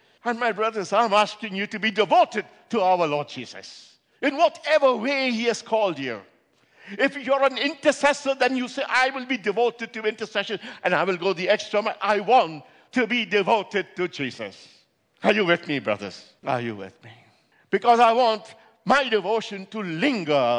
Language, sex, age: English, male, 60-79